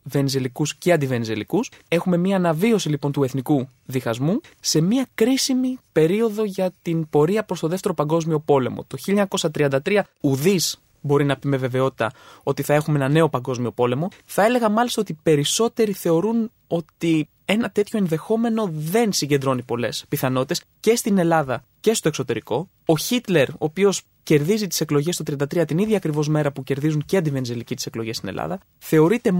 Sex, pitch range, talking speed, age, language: male, 140-205 Hz, 160 wpm, 20-39, Greek